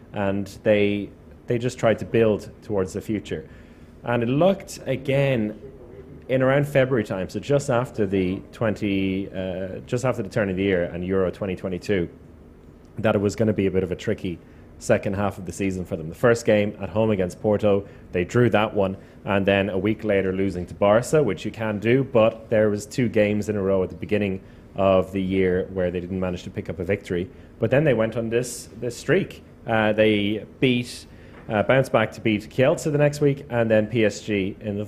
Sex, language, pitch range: male, English, 95-110 Hz